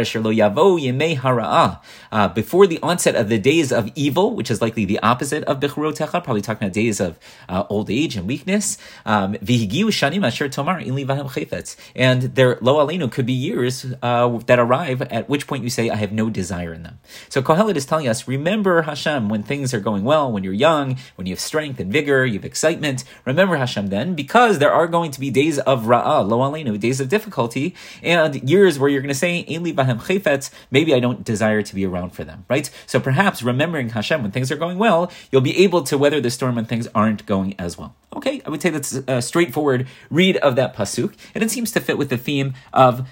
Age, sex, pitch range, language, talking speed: 30-49, male, 110-150 Hz, English, 200 wpm